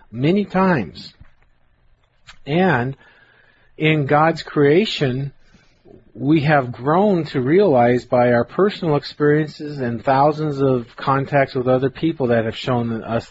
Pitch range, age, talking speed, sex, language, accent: 130-165 Hz, 40-59, 115 wpm, male, English, American